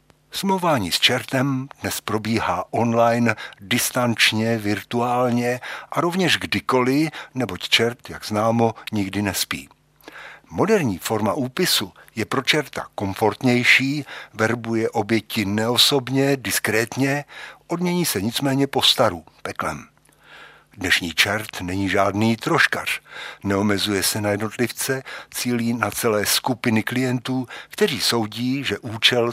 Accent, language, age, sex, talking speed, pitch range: native, Czech, 60-79, male, 105 wpm, 105-135 Hz